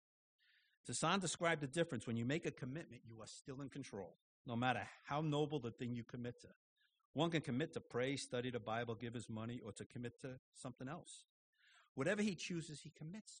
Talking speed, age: 200 wpm, 50-69